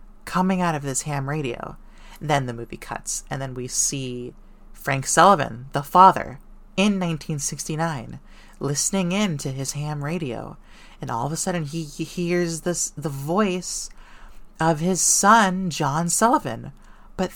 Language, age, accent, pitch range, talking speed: English, 30-49, American, 140-185 Hz, 150 wpm